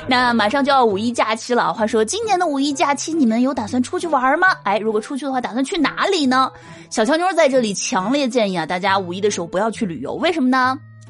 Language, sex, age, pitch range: Chinese, female, 20-39, 220-290 Hz